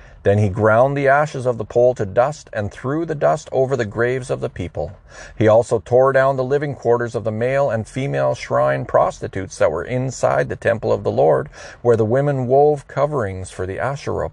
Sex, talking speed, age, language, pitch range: male, 210 wpm, 40-59, English, 100-130 Hz